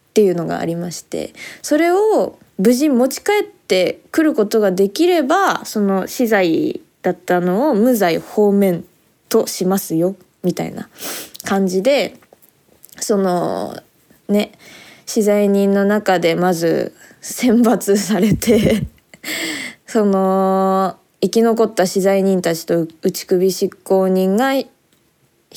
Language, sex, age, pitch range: Japanese, female, 20-39, 180-235 Hz